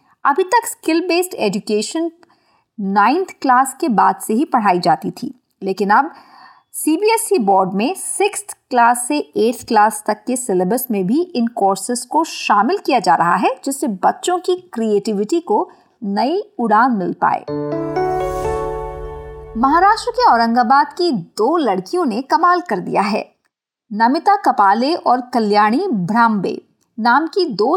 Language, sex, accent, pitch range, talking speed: Hindi, female, native, 220-360 Hz, 140 wpm